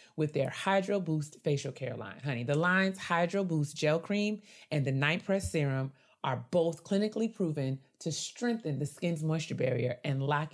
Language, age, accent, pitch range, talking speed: English, 30-49, American, 135-185 Hz, 175 wpm